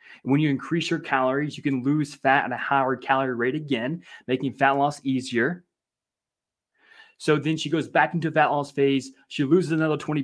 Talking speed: 190 wpm